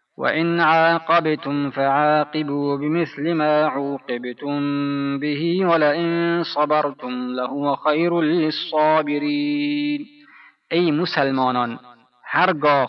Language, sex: Persian, male